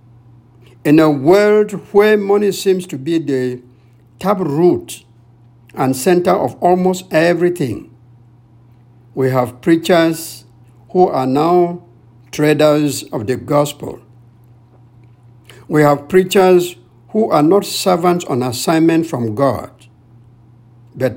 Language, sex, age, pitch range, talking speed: English, male, 60-79, 120-160 Hz, 110 wpm